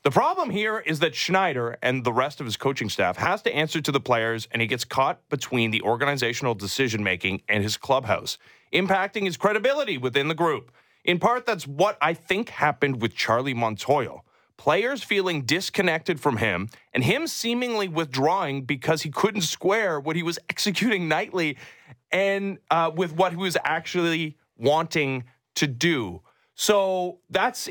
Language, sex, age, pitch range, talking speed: English, male, 30-49, 120-180 Hz, 165 wpm